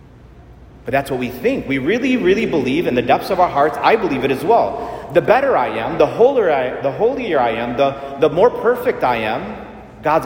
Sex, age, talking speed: male, 30-49, 205 wpm